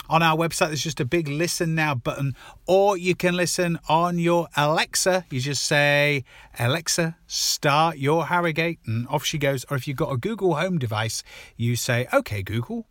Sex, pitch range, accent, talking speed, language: male, 125-170 Hz, British, 185 wpm, English